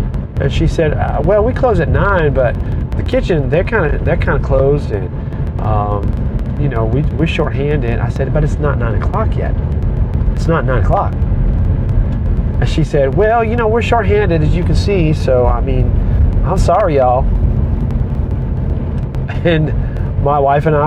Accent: American